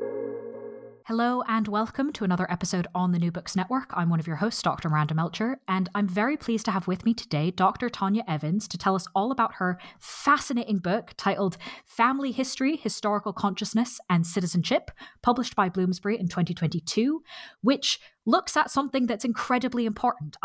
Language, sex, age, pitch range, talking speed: English, female, 20-39, 175-245 Hz, 170 wpm